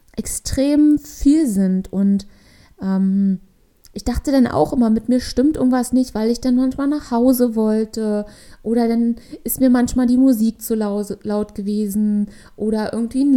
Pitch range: 215-265 Hz